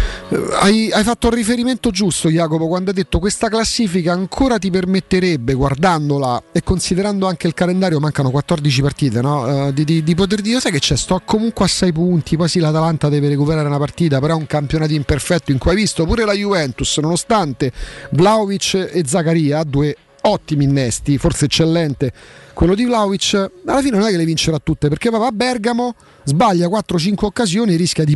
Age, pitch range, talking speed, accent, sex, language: 40-59, 130-185 Hz, 190 wpm, native, male, Italian